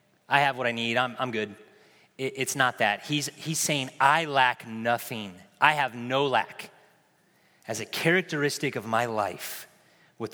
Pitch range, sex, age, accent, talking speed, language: 130-160 Hz, male, 30-49, American, 170 wpm, English